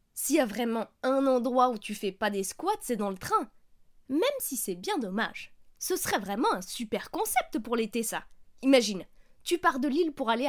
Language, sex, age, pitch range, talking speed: French, female, 20-39, 235-320 Hz, 210 wpm